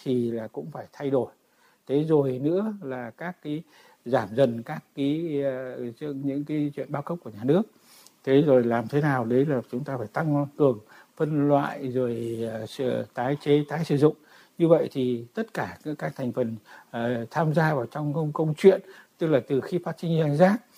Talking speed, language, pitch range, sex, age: 200 wpm, Vietnamese, 130-160 Hz, male, 60-79